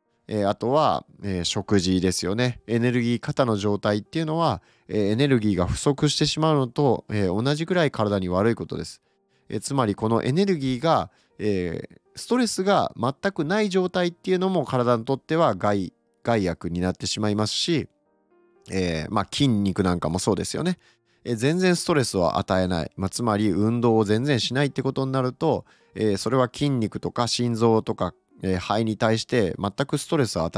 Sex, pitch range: male, 95-150 Hz